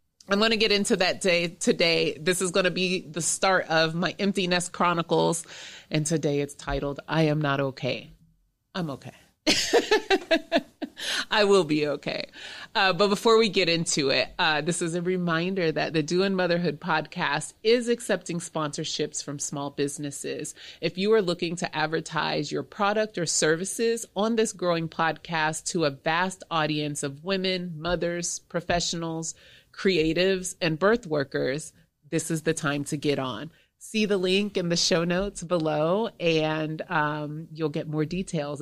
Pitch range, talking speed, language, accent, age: 155-195 Hz, 160 wpm, English, American, 30-49